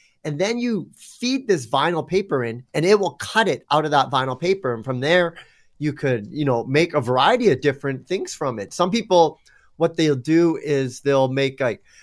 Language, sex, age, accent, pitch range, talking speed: English, male, 30-49, American, 130-170 Hz, 210 wpm